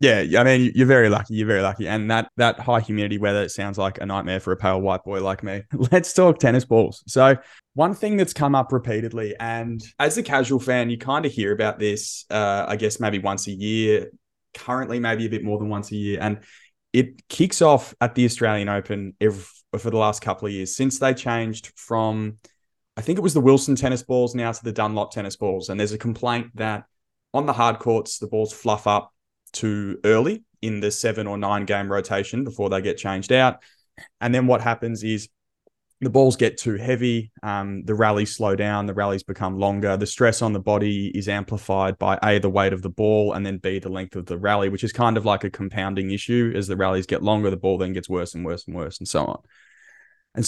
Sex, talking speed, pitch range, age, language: male, 230 wpm, 100-120 Hz, 20-39, English